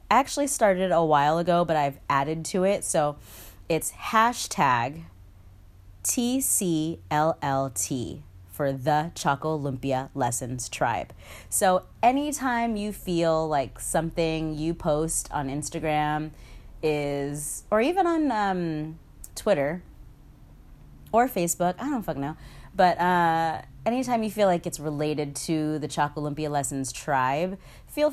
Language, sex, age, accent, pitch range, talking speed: English, female, 30-49, American, 140-175 Hz, 120 wpm